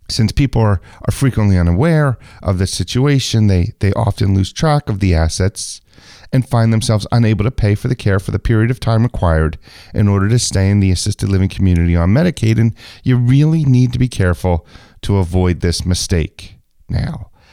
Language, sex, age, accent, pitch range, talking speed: English, male, 40-59, American, 90-120 Hz, 190 wpm